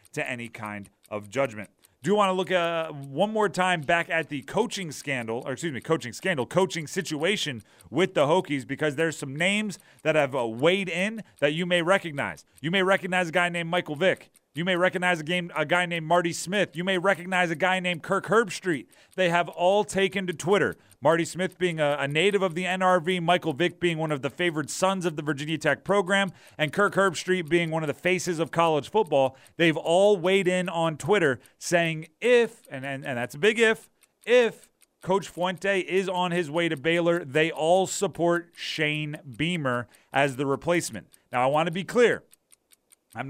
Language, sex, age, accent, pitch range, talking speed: English, male, 30-49, American, 155-190 Hz, 200 wpm